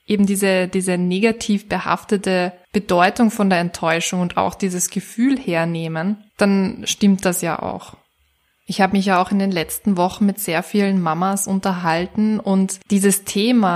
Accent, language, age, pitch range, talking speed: German, German, 20-39, 175-205 Hz, 155 wpm